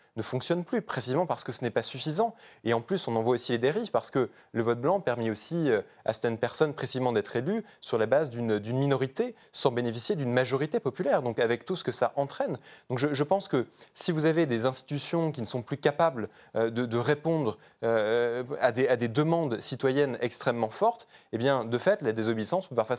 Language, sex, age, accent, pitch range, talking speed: French, male, 20-39, French, 115-150 Hz, 225 wpm